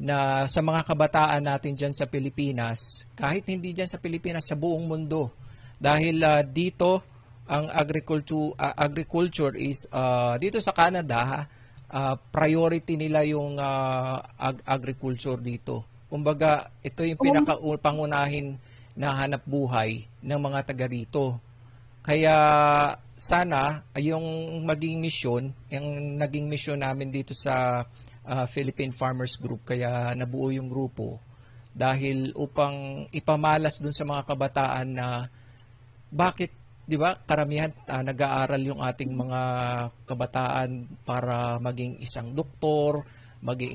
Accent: native